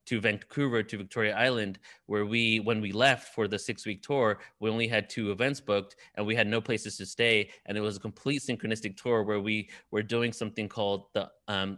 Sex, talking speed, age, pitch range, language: male, 220 wpm, 30-49, 100-115 Hz, English